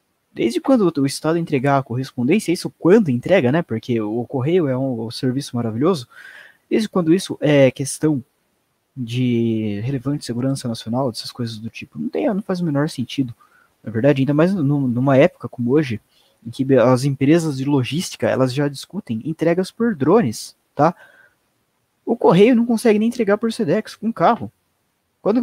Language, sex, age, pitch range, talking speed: Portuguese, male, 20-39, 135-185 Hz, 165 wpm